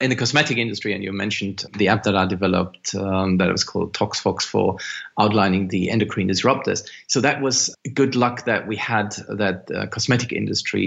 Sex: male